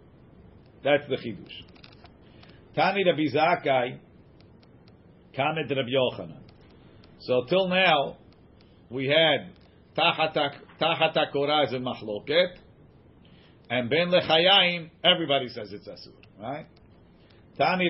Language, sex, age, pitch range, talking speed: English, male, 50-69, 135-170 Hz, 90 wpm